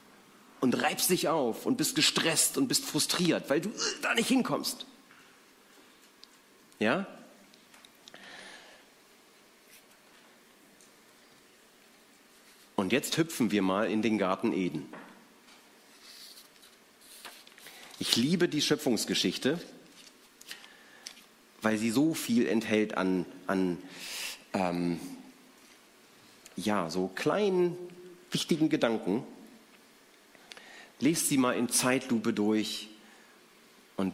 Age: 40-59